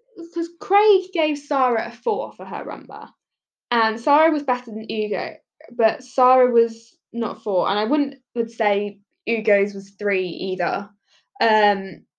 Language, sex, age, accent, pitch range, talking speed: English, female, 10-29, British, 200-265 Hz, 150 wpm